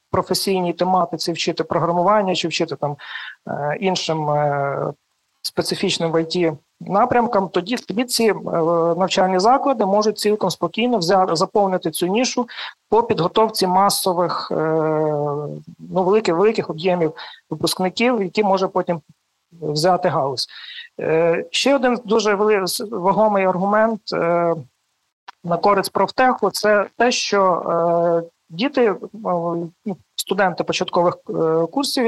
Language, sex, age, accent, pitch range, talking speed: Ukrainian, male, 40-59, native, 170-210 Hz, 90 wpm